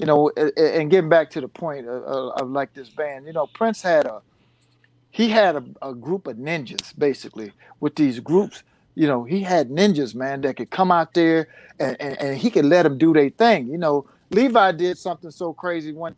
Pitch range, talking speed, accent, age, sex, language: 145-225 Hz, 215 wpm, American, 50-69, male, English